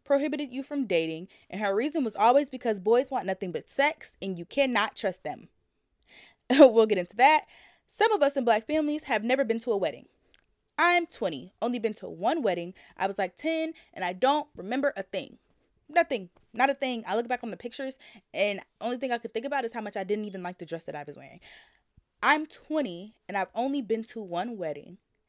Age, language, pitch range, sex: 20-39, English, 185-270 Hz, female